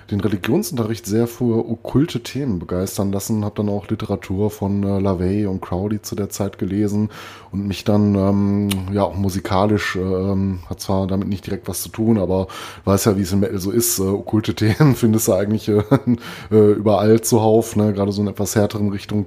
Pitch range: 90-105 Hz